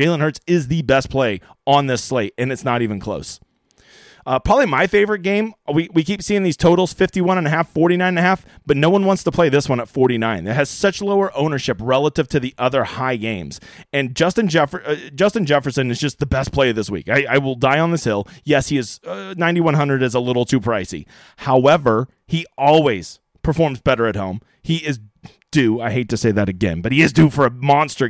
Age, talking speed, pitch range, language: 30-49, 230 wpm, 125-170 Hz, English